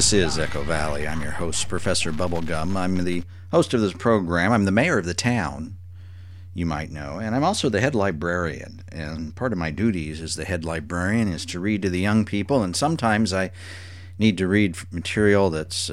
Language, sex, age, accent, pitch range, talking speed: English, male, 50-69, American, 85-100 Hz, 205 wpm